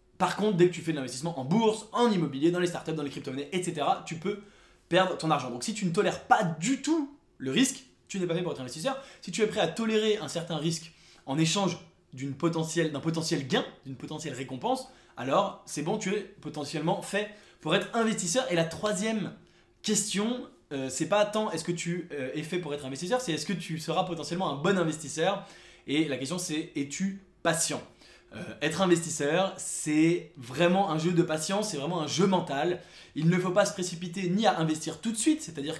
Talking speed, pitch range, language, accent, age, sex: 220 wpm, 150-195 Hz, English, French, 20-39, male